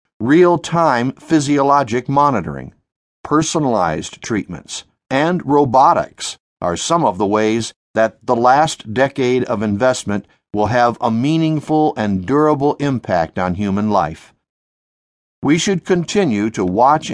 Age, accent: 60-79, American